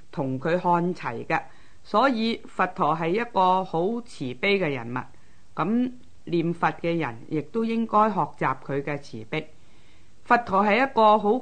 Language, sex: Chinese, female